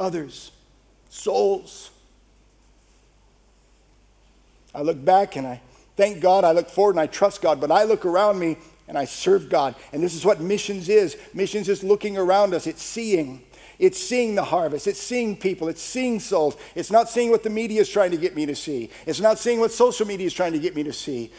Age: 50-69